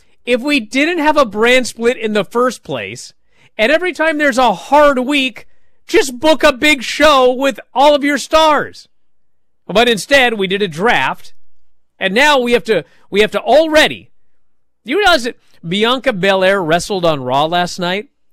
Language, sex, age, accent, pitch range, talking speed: English, male, 40-59, American, 175-275 Hz, 175 wpm